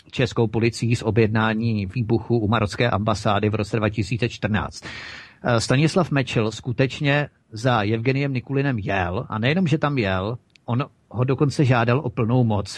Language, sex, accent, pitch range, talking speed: Czech, male, native, 110-125 Hz, 140 wpm